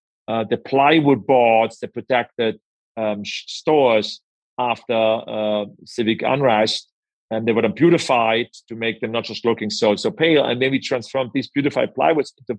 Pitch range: 115-140 Hz